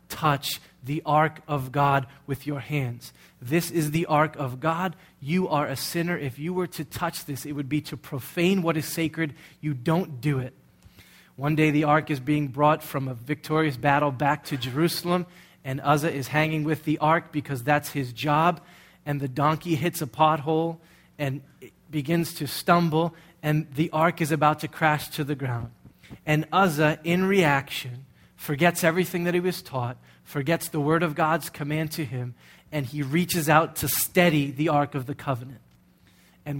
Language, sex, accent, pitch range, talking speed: English, male, American, 140-165 Hz, 185 wpm